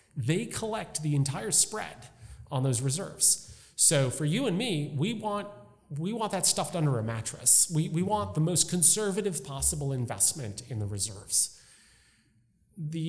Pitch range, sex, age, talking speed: 120-170 Hz, male, 30-49, 155 wpm